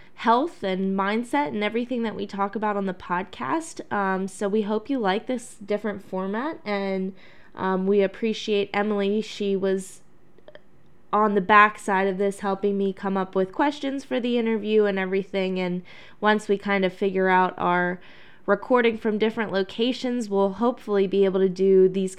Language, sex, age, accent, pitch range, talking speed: English, female, 10-29, American, 185-215 Hz, 175 wpm